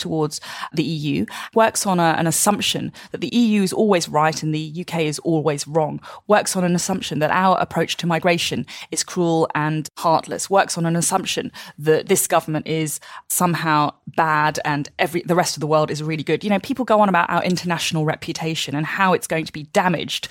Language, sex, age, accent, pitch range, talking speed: English, female, 20-39, British, 155-190 Hz, 205 wpm